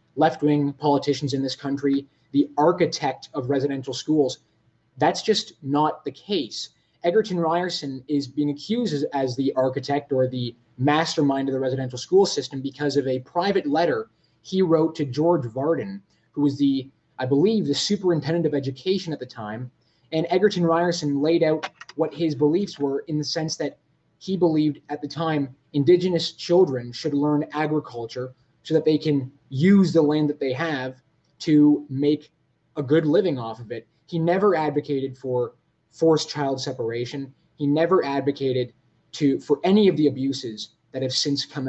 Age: 20-39